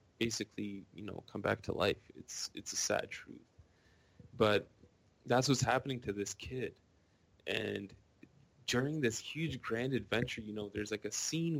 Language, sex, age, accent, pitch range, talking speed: English, male, 20-39, American, 105-130 Hz, 160 wpm